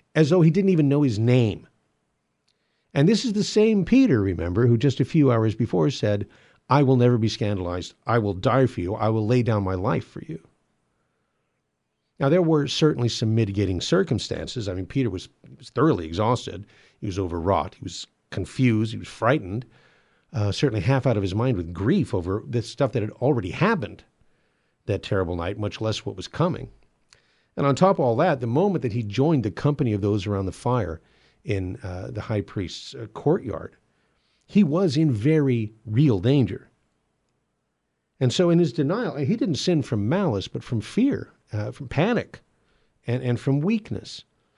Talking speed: 185 wpm